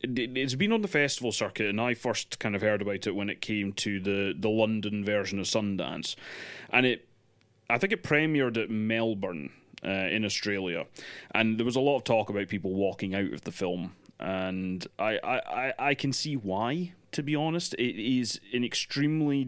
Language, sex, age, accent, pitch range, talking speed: English, male, 30-49, British, 100-125 Hz, 195 wpm